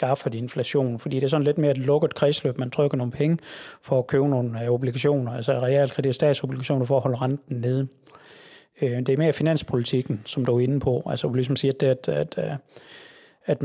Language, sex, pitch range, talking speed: Danish, male, 130-145 Hz, 210 wpm